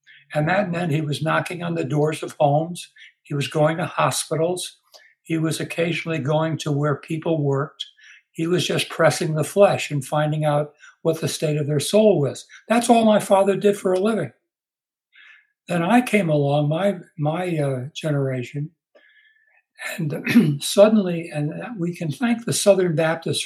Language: English